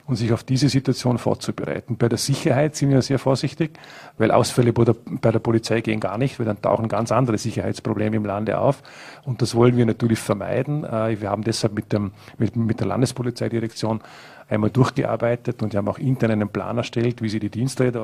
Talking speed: 195 wpm